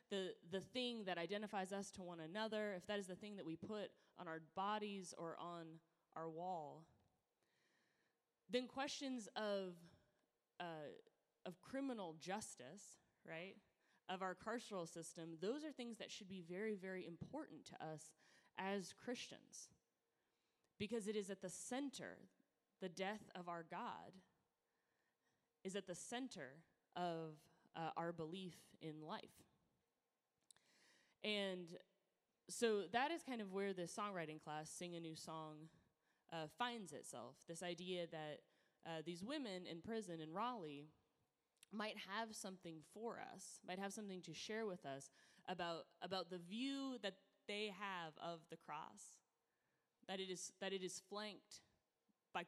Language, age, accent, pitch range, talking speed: English, 20-39, American, 170-215 Hz, 145 wpm